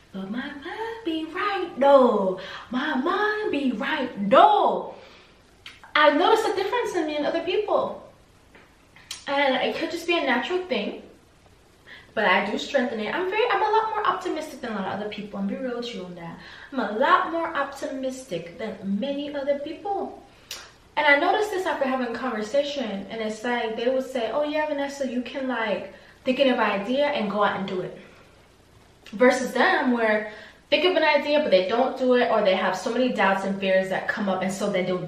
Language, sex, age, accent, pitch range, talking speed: English, female, 20-39, American, 205-300 Hz, 205 wpm